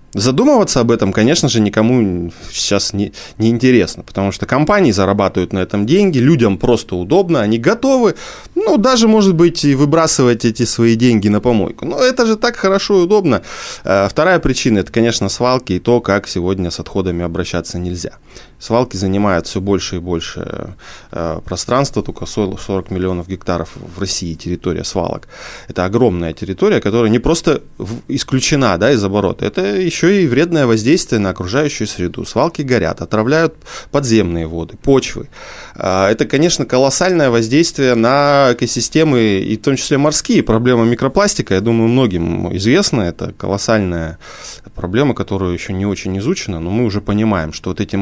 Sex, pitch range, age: male, 95-135 Hz, 20-39